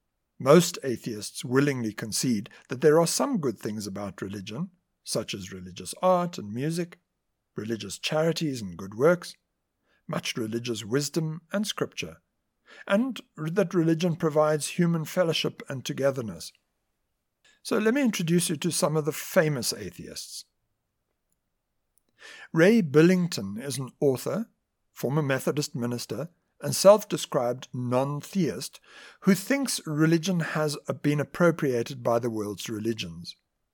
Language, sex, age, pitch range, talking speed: English, male, 60-79, 120-175 Hz, 120 wpm